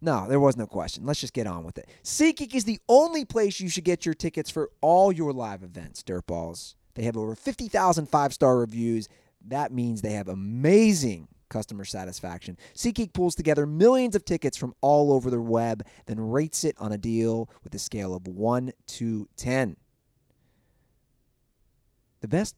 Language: English